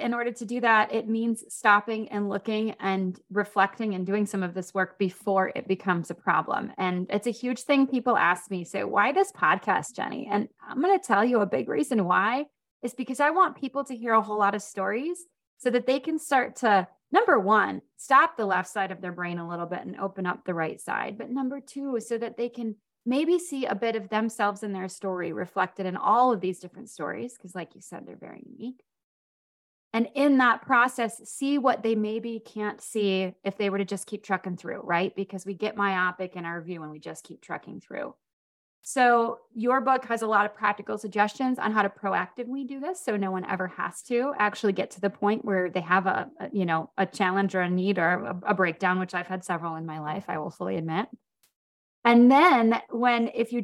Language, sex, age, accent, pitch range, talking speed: English, female, 20-39, American, 190-240 Hz, 225 wpm